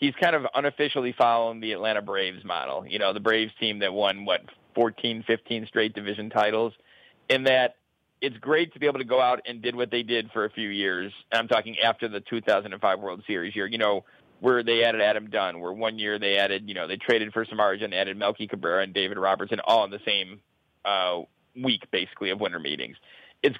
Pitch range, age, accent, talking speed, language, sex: 110-125 Hz, 40-59, American, 215 wpm, English, male